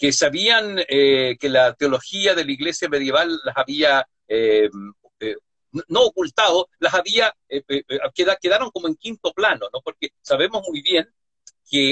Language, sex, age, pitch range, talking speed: Spanish, male, 60-79, 135-225 Hz, 155 wpm